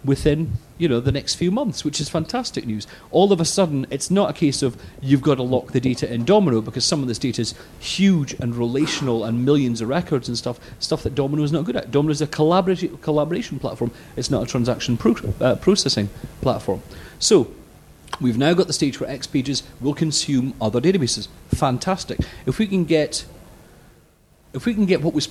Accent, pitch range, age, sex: British, 115-150 Hz, 40-59, male